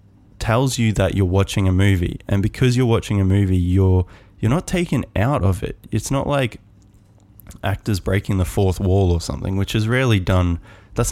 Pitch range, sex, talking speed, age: 95-110 Hz, male, 190 wpm, 20-39